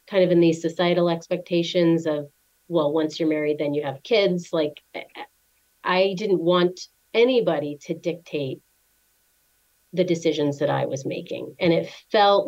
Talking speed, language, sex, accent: 150 wpm, English, female, American